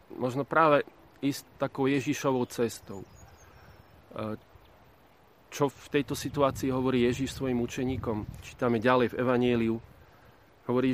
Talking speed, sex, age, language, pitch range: 105 wpm, male, 30-49, Slovak, 115-130 Hz